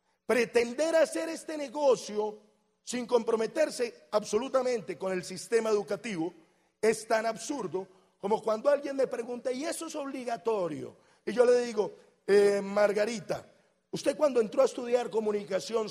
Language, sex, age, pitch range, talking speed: Spanish, male, 40-59, 210-265 Hz, 130 wpm